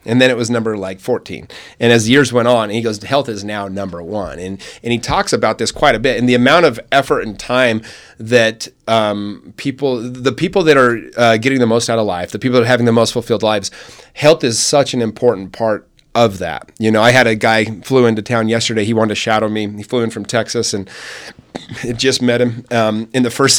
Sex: male